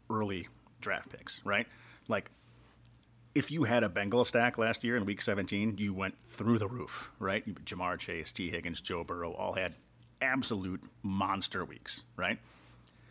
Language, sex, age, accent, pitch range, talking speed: English, male, 30-49, American, 105-130 Hz, 155 wpm